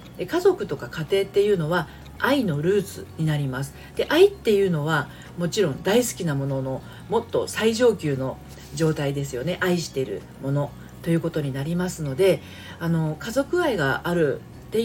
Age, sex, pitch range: 40-59, female, 145-200 Hz